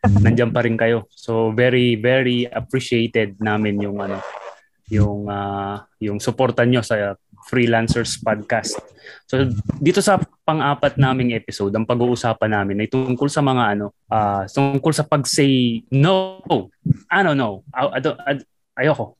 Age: 20-39